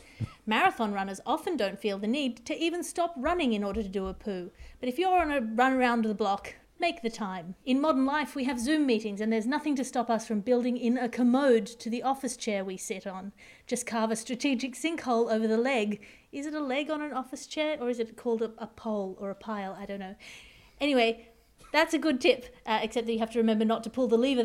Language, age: English, 40-59